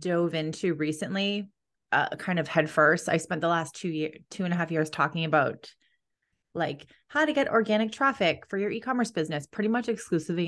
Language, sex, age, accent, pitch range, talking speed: English, female, 20-39, American, 160-190 Hz, 190 wpm